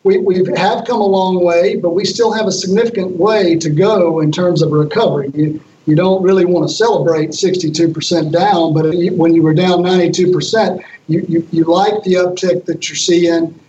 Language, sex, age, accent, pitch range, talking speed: English, male, 50-69, American, 165-185 Hz, 195 wpm